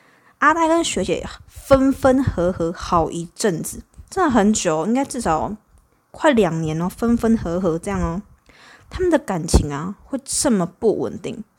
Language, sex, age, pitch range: Chinese, female, 20-39, 180-230 Hz